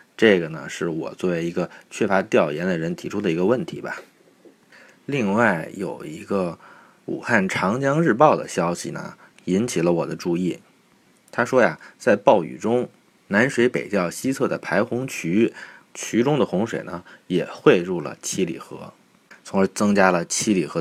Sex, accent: male, native